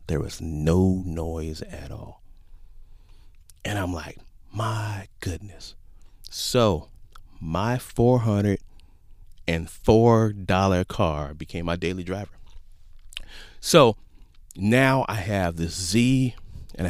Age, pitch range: 40-59, 85-105 Hz